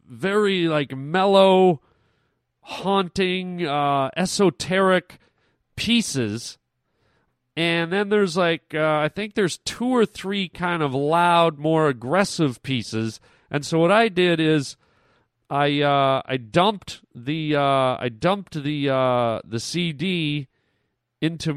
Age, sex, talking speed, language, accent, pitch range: 40-59, male, 120 wpm, English, American, 130-180 Hz